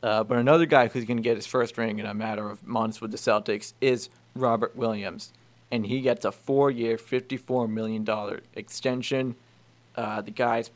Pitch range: 110-125 Hz